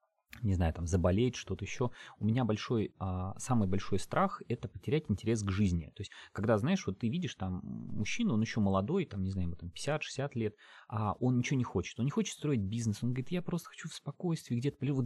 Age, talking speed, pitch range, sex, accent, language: 30-49, 225 wpm, 100-130 Hz, male, native, Russian